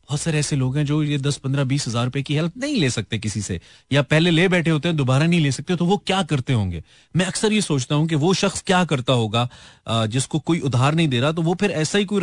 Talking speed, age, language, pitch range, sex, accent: 280 wpm, 30-49, Hindi, 125-155 Hz, male, native